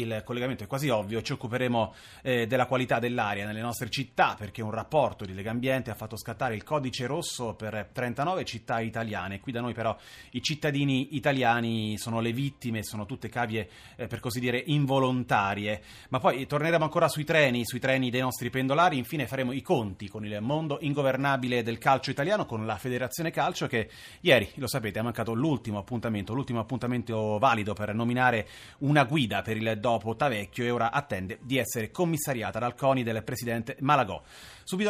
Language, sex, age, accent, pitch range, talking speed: Italian, male, 30-49, native, 110-135 Hz, 175 wpm